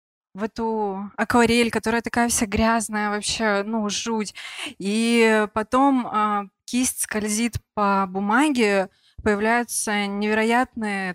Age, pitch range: 20-39, 200-235 Hz